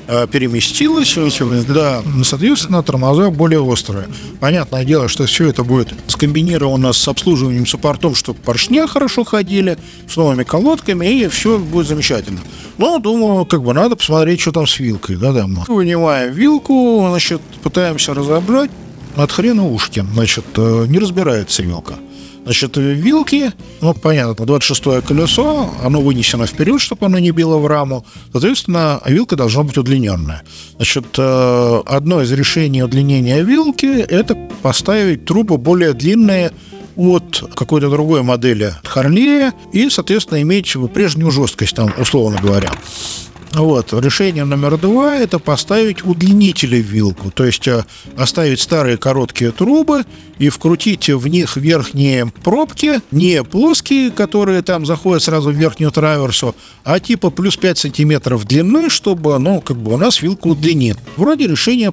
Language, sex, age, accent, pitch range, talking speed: Russian, male, 50-69, native, 125-190 Hz, 140 wpm